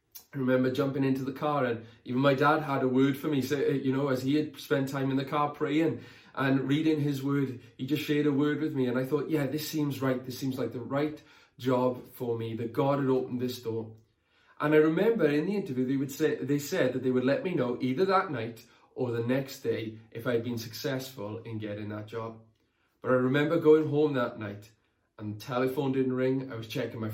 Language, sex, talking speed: English, male, 235 wpm